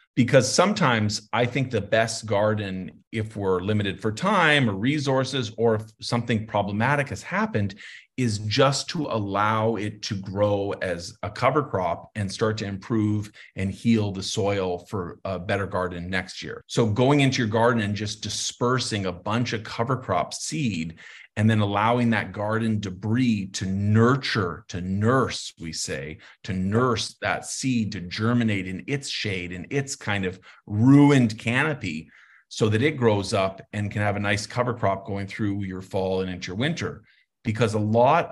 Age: 40-59